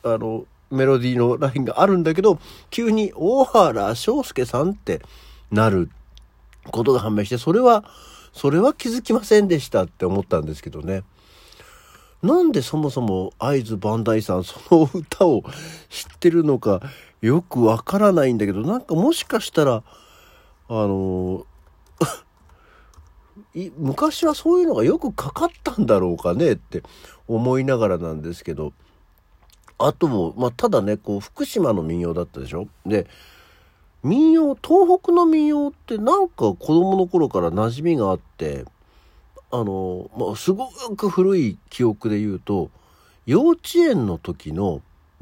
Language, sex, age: Japanese, male, 50-69